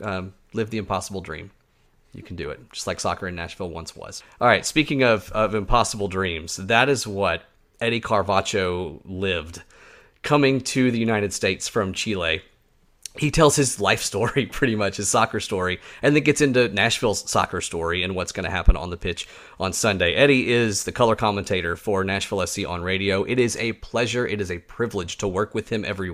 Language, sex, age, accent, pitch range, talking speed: English, male, 30-49, American, 100-125 Hz, 195 wpm